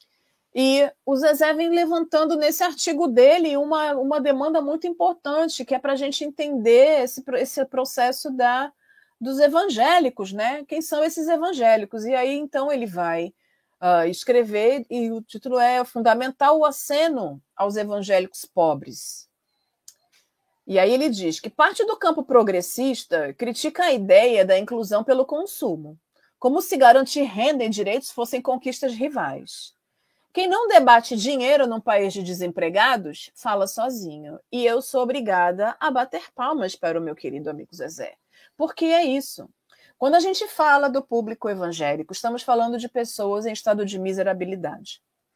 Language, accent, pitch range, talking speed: Portuguese, Brazilian, 200-300 Hz, 145 wpm